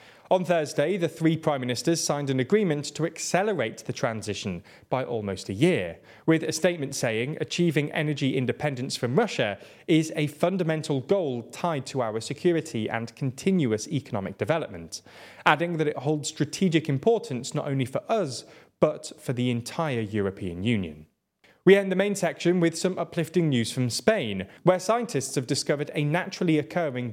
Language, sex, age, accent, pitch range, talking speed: English, male, 30-49, British, 125-170 Hz, 160 wpm